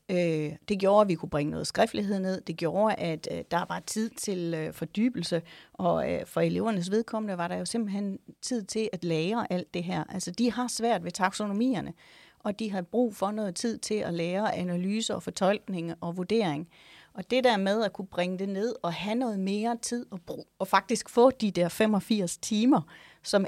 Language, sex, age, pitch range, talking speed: Danish, female, 30-49, 170-220 Hz, 195 wpm